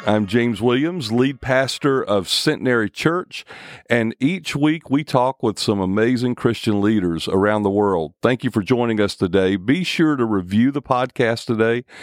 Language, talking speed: English, 170 wpm